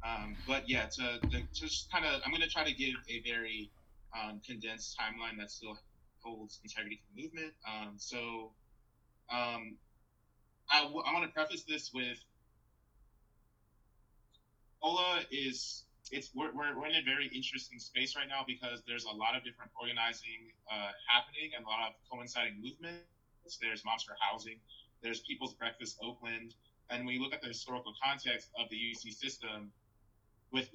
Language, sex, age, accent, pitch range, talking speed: English, male, 20-39, American, 110-130 Hz, 165 wpm